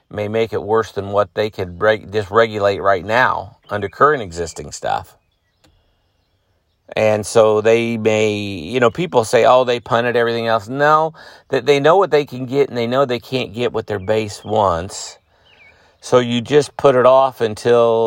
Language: English